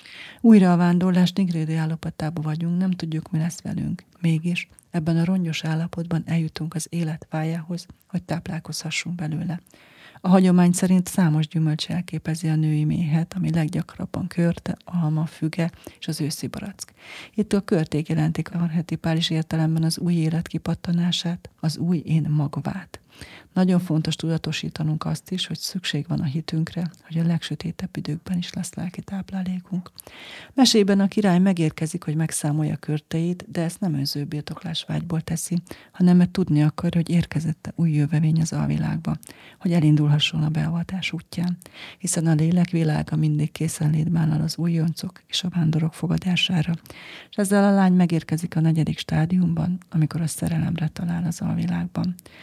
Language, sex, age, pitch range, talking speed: Hungarian, female, 40-59, 160-180 Hz, 145 wpm